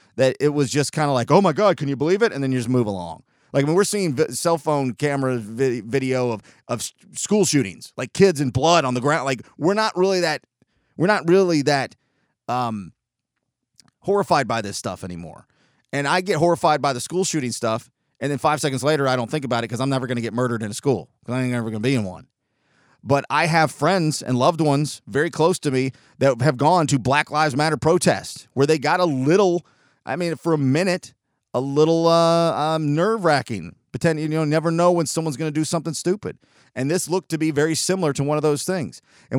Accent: American